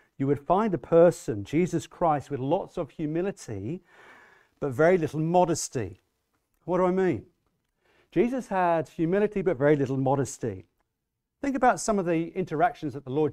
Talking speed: 160 wpm